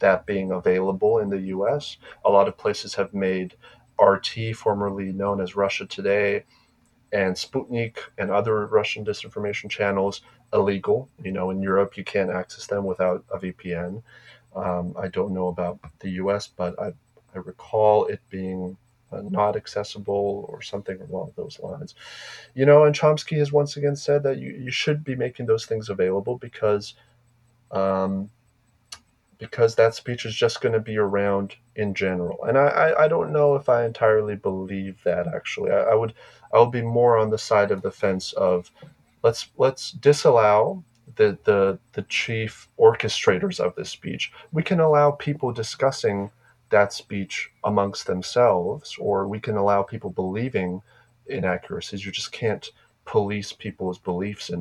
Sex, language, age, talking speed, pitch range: male, English, 30-49, 165 wpm, 95-120 Hz